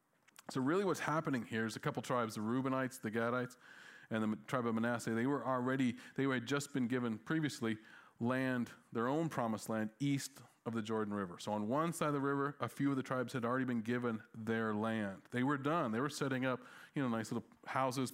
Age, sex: 40-59, male